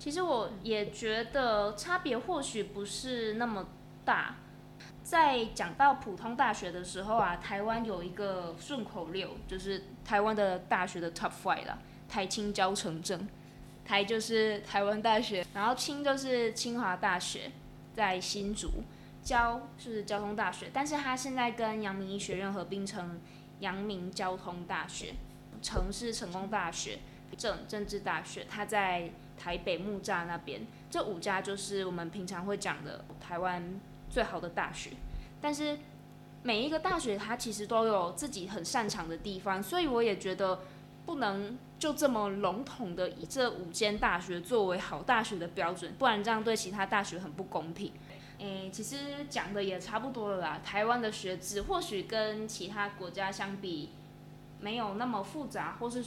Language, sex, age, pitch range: Chinese, female, 20-39, 180-225 Hz